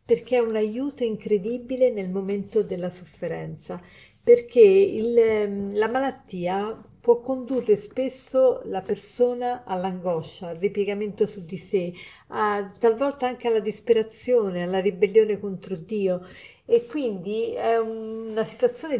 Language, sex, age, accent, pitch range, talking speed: Italian, female, 50-69, native, 200-245 Hz, 115 wpm